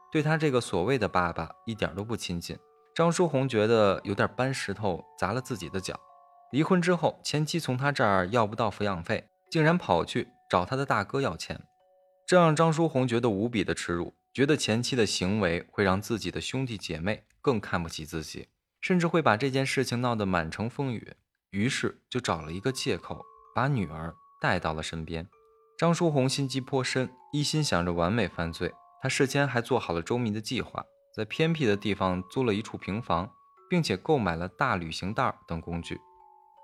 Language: Chinese